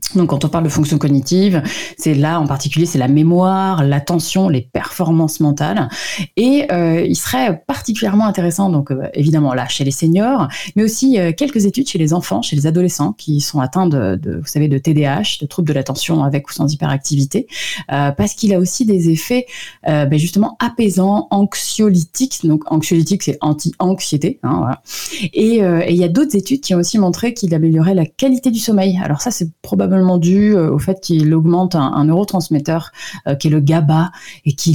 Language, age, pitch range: French, 30-49, 150-200 Hz